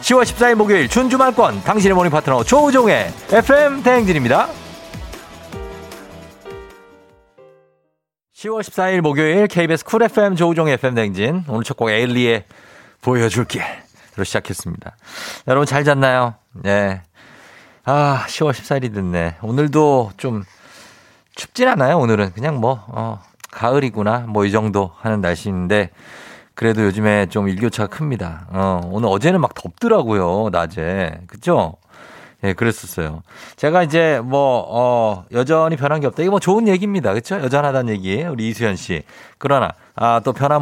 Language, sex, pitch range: Korean, male, 105-170 Hz